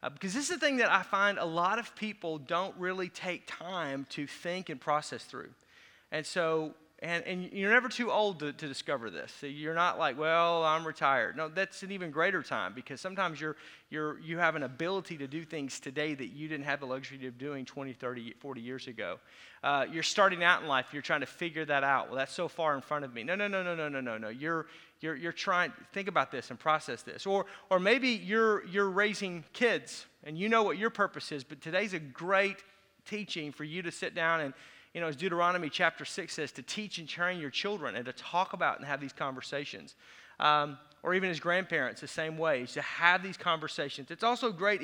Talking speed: 230 wpm